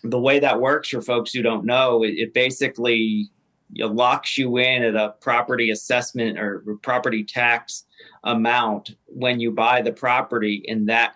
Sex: male